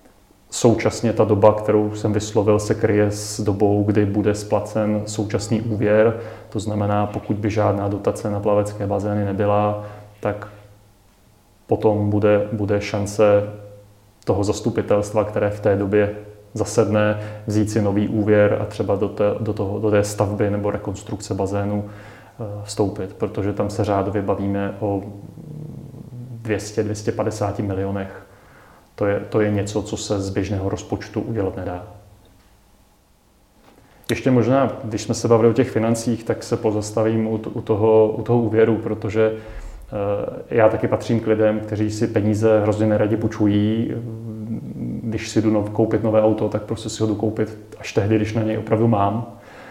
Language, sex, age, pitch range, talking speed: Czech, male, 30-49, 105-110 Hz, 145 wpm